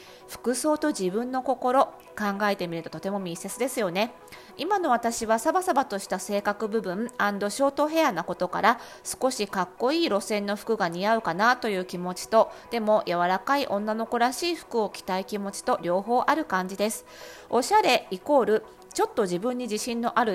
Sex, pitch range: female, 190-250 Hz